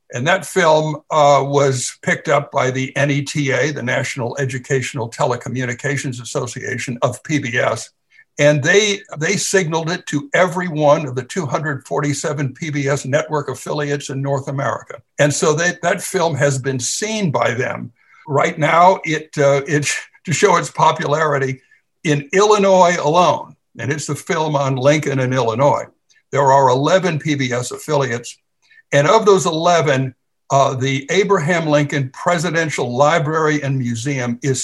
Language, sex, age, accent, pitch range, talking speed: English, male, 60-79, American, 135-170 Hz, 140 wpm